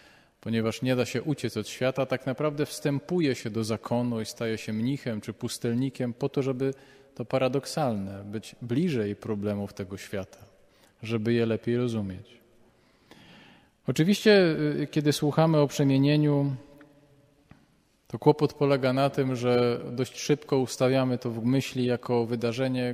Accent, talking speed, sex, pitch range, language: native, 135 wpm, male, 110-135 Hz, Polish